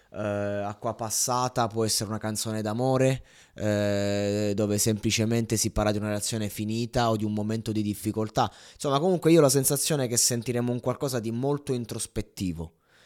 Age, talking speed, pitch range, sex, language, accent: 20-39, 165 wpm, 105-130 Hz, male, Italian, native